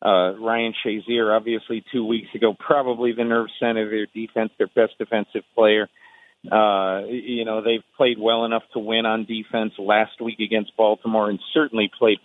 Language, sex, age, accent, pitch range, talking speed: English, male, 40-59, American, 110-130 Hz, 170 wpm